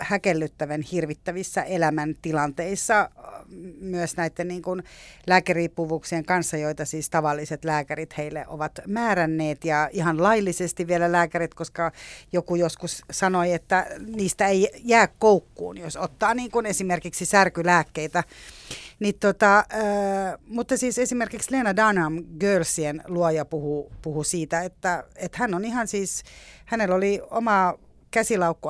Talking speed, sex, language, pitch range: 115 wpm, female, Finnish, 155-190 Hz